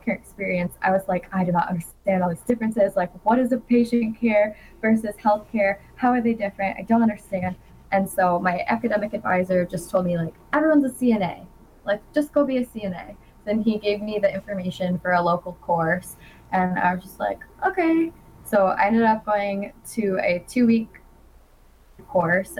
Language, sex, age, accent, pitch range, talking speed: English, female, 10-29, American, 180-210 Hz, 190 wpm